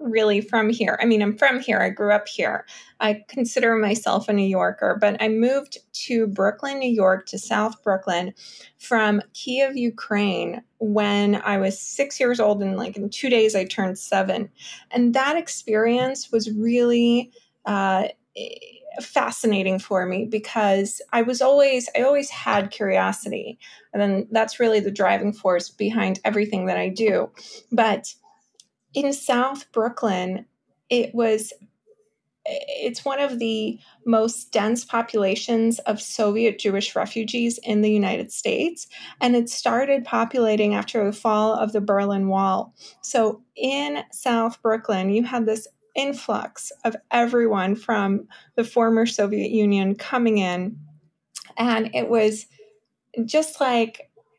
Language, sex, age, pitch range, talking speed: English, female, 20-39, 210-245 Hz, 140 wpm